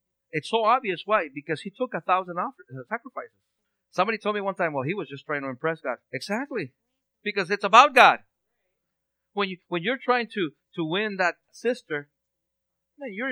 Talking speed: 175 wpm